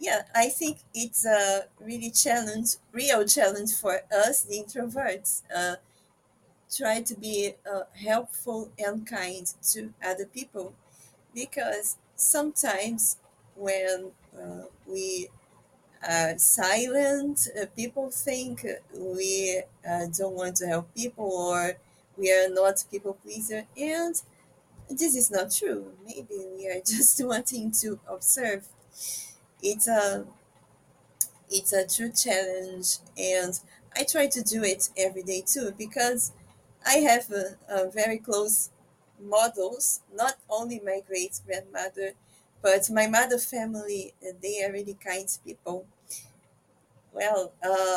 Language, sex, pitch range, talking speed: English, female, 185-230 Hz, 120 wpm